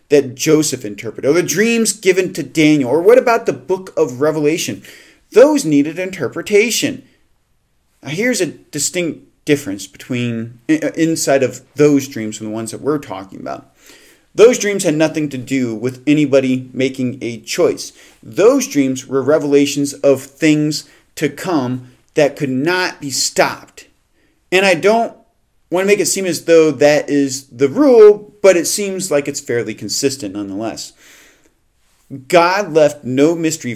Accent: American